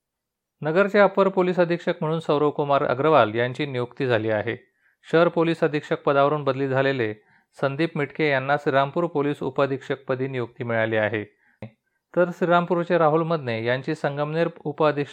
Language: Marathi